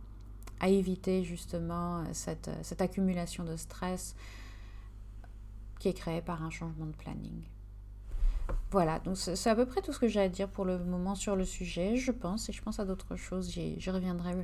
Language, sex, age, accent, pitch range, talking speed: French, female, 30-49, French, 160-195 Hz, 185 wpm